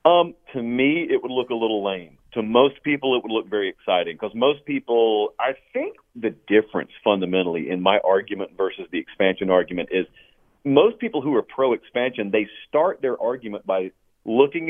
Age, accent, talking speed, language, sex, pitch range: 40-59, American, 185 wpm, English, male, 110-175 Hz